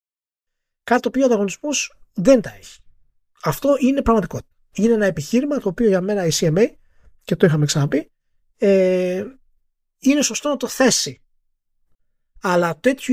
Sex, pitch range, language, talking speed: male, 140-200 Hz, Greek, 135 wpm